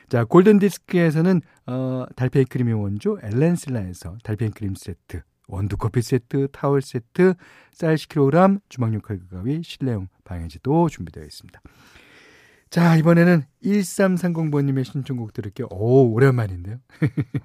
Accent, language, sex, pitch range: native, Korean, male, 100-145 Hz